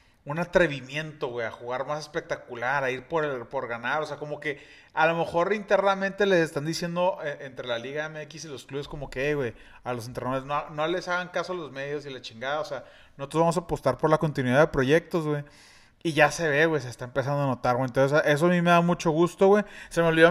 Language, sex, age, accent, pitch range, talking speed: Spanish, male, 30-49, Mexican, 135-170 Hz, 250 wpm